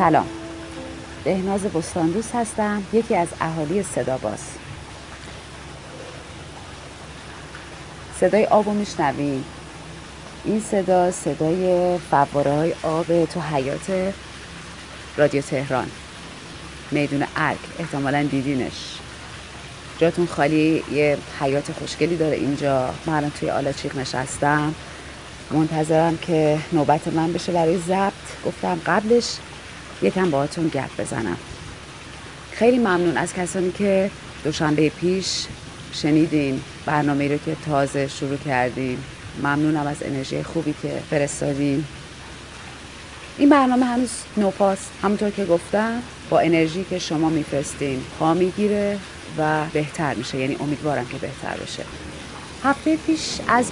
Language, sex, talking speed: Persian, female, 105 wpm